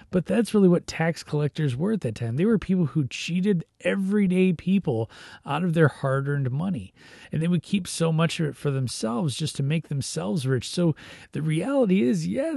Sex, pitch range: male, 135-180 Hz